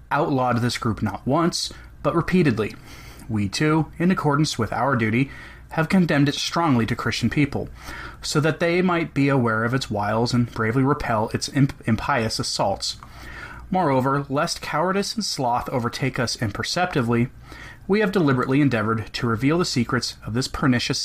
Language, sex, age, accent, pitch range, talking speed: English, male, 30-49, American, 115-150 Hz, 155 wpm